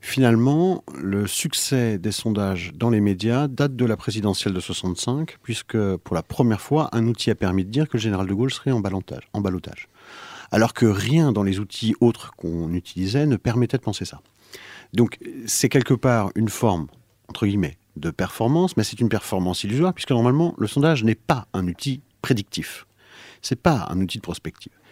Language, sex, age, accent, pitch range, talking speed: French, male, 50-69, French, 100-140 Hz, 190 wpm